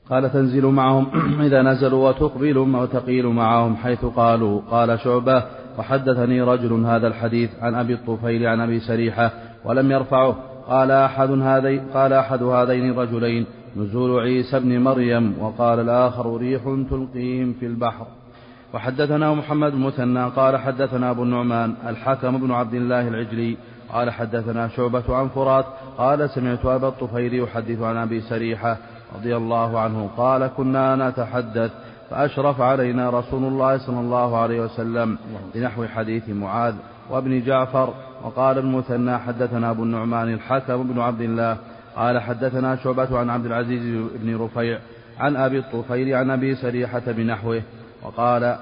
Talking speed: 135 wpm